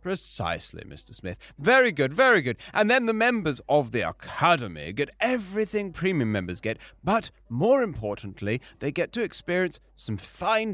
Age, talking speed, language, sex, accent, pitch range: 30-49, 155 wpm, English, male, British, 130-205 Hz